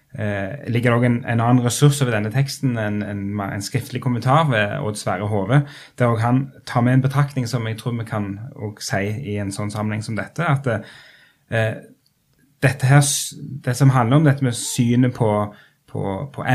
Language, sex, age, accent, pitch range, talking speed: English, male, 10-29, Norwegian, 105-135 Hz, 185 wpm